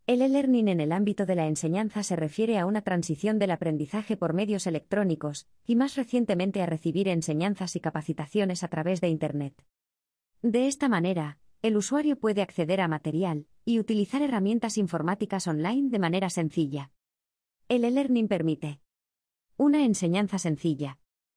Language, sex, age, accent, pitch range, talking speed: Spanish, female, 20-39, Spanish, 160-220 Hz, 150 wpm